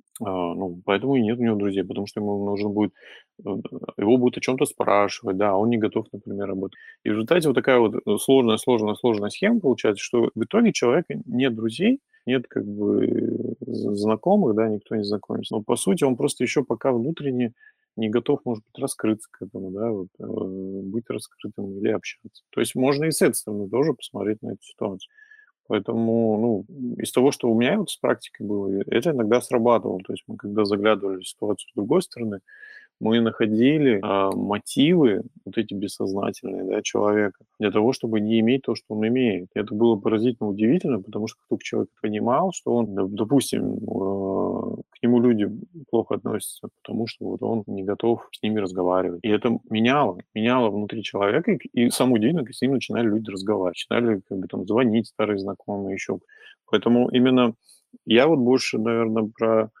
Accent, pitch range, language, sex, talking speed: native, 105-125 Hz, Russian, male, 180 wpm